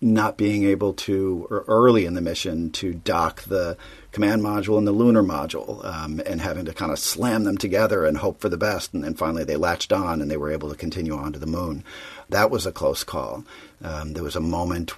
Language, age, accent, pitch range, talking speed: English, 40-59, American, 80-100 Hz, 230 wpm